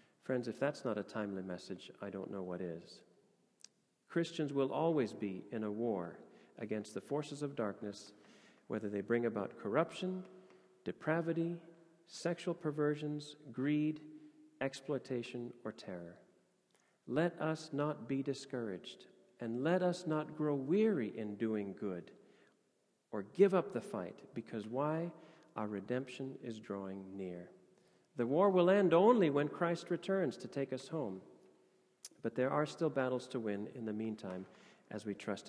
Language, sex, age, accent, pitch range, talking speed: English, male, 40-59, American, 110-165 Hz, 145 wpm